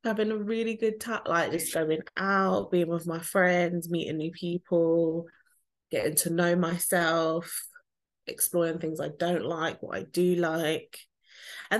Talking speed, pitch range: 155 wpm, 160-220 Hz